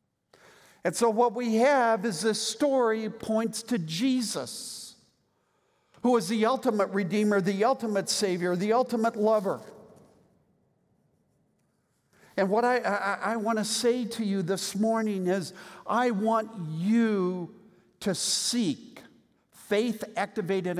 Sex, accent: male, American